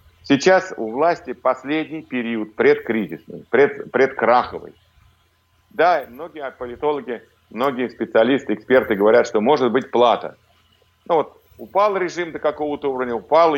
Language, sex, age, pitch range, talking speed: Russian, male, 50-69, 110-145 Hz, 120 wpm